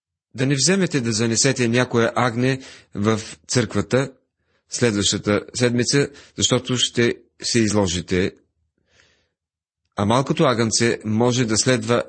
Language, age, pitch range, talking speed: Bulgarian, 40-59, 105-135 Hz, 105 wpm